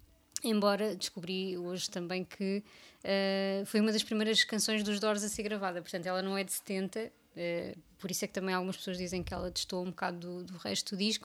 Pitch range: 185-210 Hz